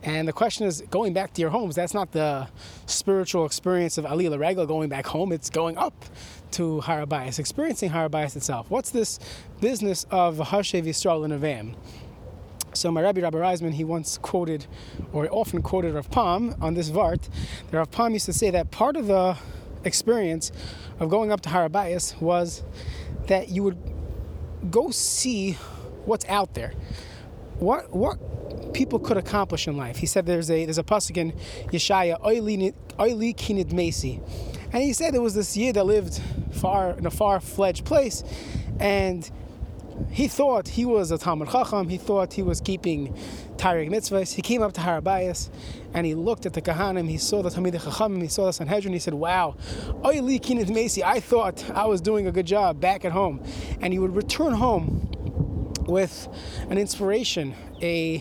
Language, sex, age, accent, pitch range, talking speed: English, male, 20-39, American, 155-205 Hz, 170 wpm